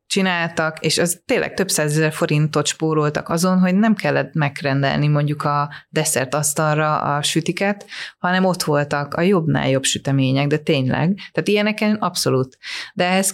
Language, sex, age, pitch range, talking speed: Hungarian, female, 30-49, 150-180 Hz, 150 wpm